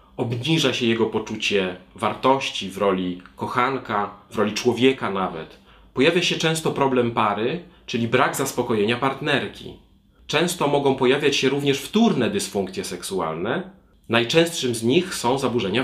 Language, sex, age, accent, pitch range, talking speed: Polish, male, 30-49, native, 115-145 Hz, 130 wpm